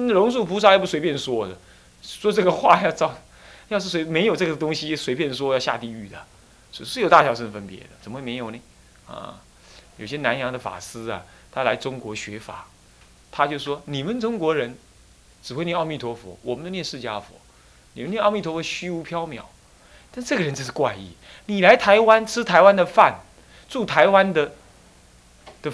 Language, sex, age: Chinese, male, 30-49